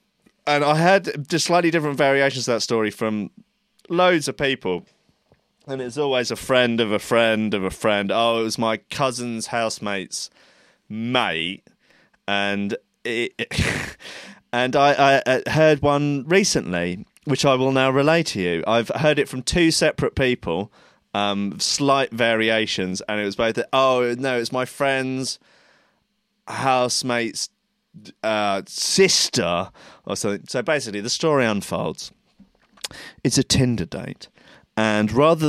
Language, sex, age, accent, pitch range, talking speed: English, male, 30-49, British, 105-140 Hz, 140 wpm